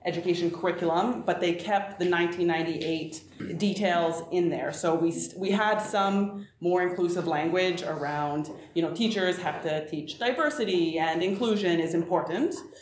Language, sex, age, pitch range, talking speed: English, female, 30-49, 165-195 Hz, 140 wpm